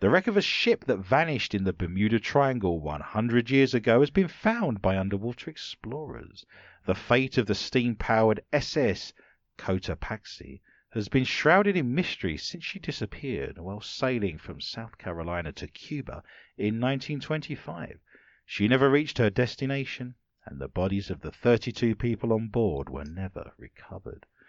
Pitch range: 100-150 Hz